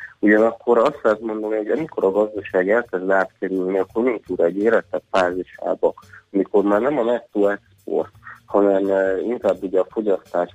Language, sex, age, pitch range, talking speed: Hungarian, male, 30-49, 95-105 Hz, 155 wpm